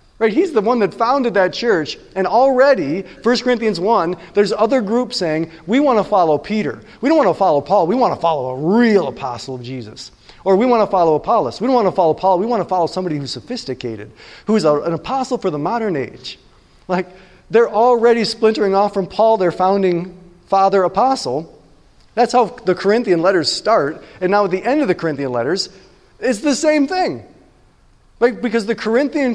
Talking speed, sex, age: 195 wpm, male, 40-59